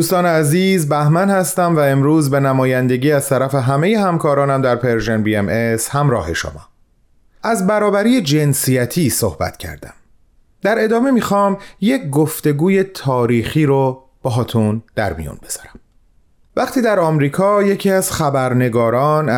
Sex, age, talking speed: male, 30-49, 125 wpm